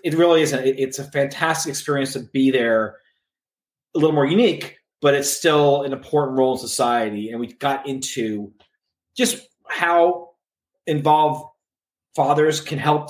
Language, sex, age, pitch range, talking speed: English, male, 30-49, 125-150 Hz, 145 wpm